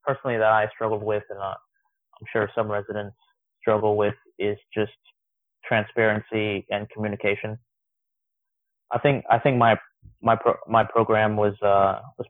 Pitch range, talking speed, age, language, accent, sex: 105-115 Hz, 145 wpm, 20-39, English, American, male